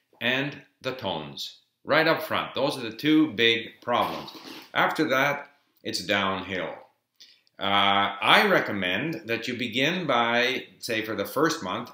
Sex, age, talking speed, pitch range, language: male, 50-69, 140 wpm, 95-125 Hz, English